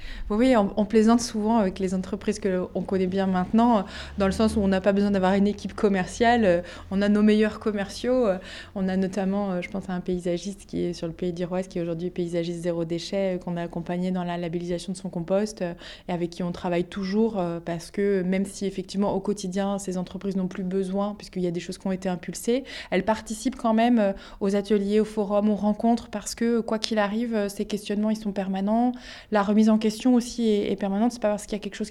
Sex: female